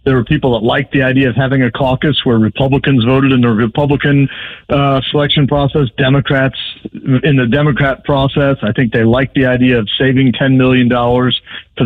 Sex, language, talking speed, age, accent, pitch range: male, English, 180 wpm, 50-69, American, 125-145 Hz